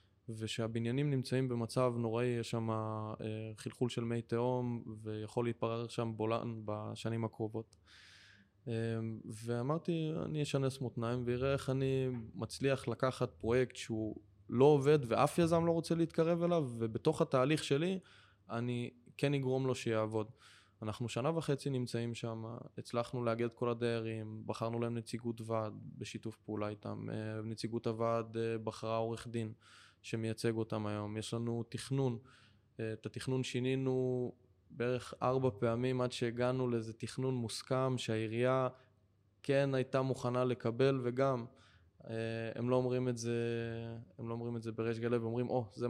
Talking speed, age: 130 wpm, 20-39